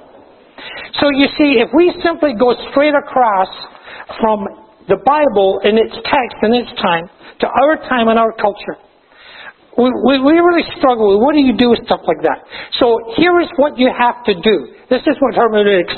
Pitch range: 225-285 Hz